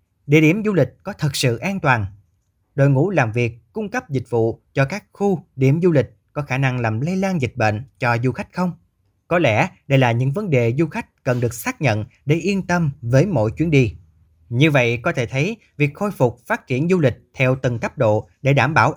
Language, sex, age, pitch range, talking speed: Vietnamese, male, 20-39, 115-155 Hz, 235 wpm